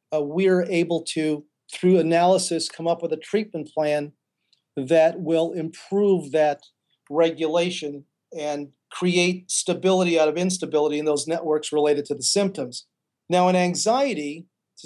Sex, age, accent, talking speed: male, 40-59, American, 135 wpm